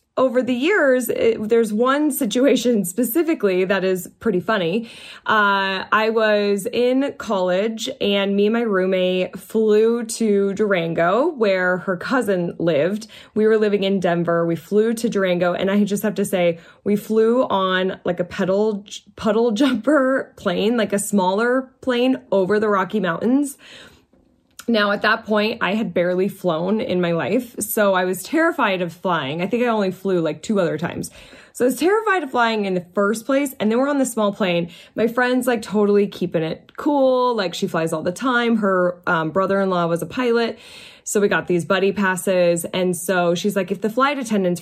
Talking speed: 185 wpm